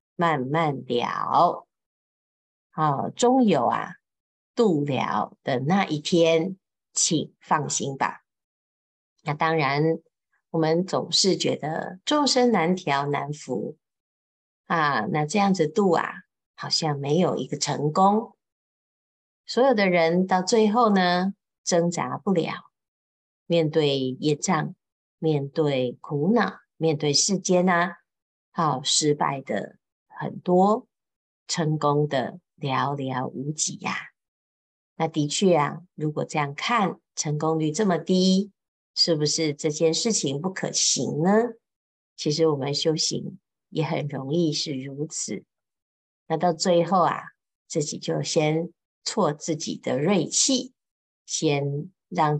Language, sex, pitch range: Chinese, female, 145-185 Hz